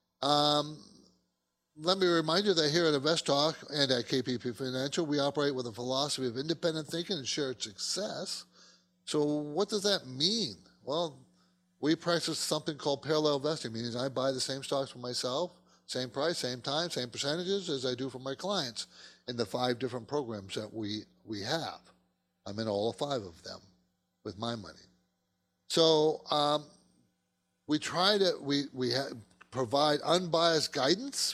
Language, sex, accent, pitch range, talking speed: English, male, American, 120-160 Hz, 165 wpm